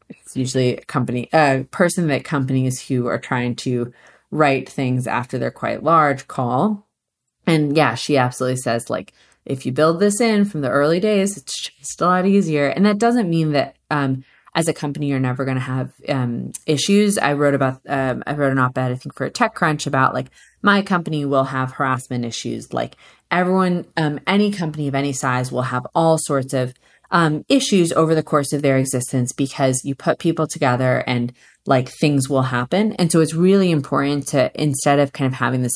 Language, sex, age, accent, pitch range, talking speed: English, female, 30-49, American, 130-160 Hz, 205 wpm